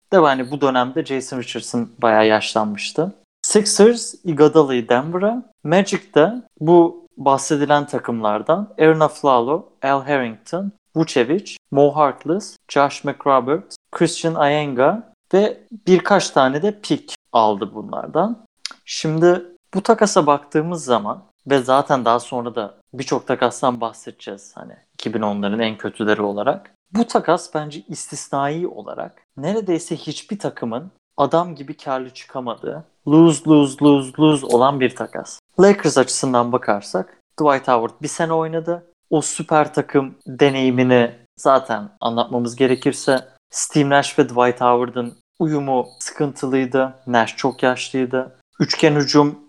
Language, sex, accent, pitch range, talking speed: Turkish, male, native, 125-165 Hz, 120 wpm